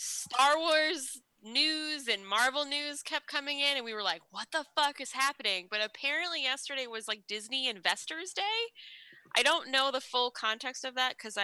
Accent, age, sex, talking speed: American, 10-29, female, 185 wpm